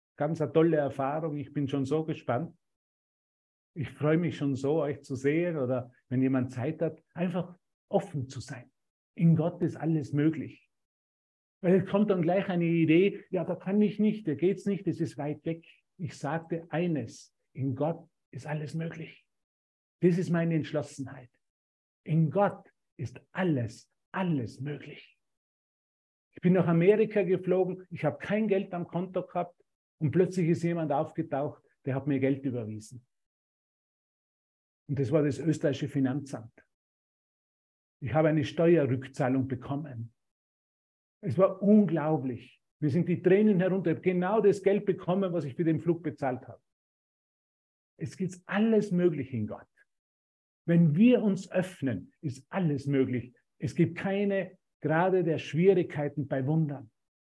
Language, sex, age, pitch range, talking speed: German, male, 50-69, 135-180 Hz, 150 wpm